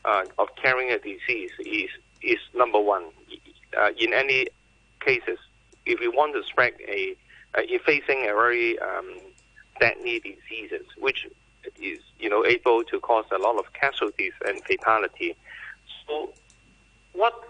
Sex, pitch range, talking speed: male, 330-415 Hz, 145 wpm